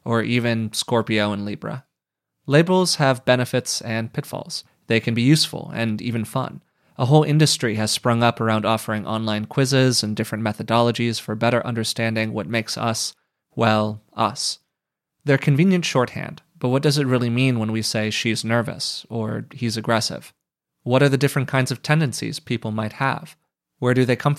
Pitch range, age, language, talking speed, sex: 110-130 Hz, 30-49, English, 170 wpm, male